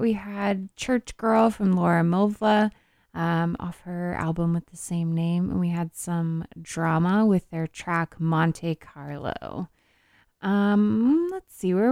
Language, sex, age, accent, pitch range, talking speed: English, female, 20-39, American, 170-210 Hz, 145 wpm